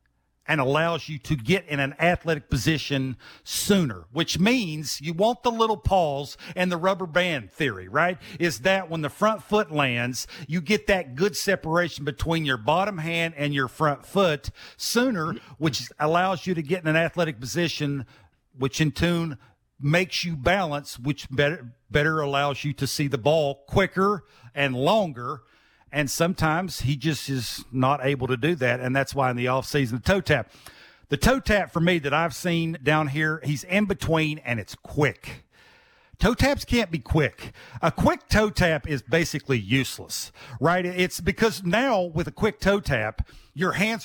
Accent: American